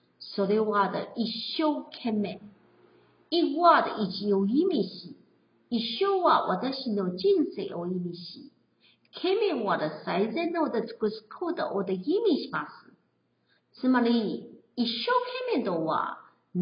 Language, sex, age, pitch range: Chinese, female, 50-69, 195-310 Hz